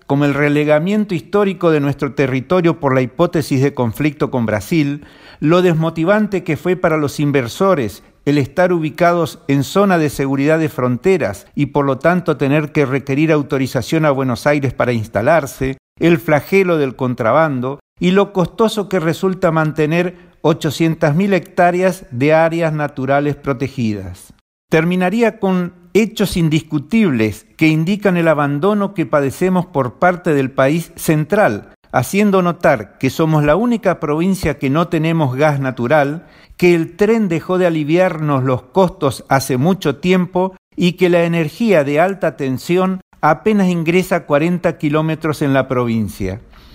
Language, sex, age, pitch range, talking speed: Spanish, male, 50-69, 140-180 Hz, 140 wpm